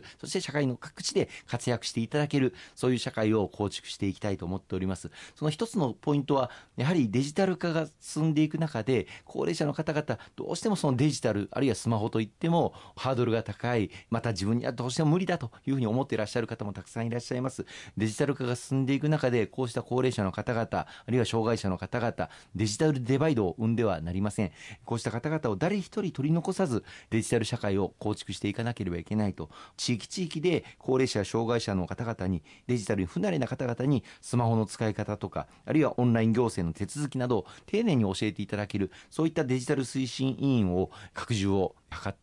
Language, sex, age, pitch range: Japanese, male, 40-59, 100-130 Hz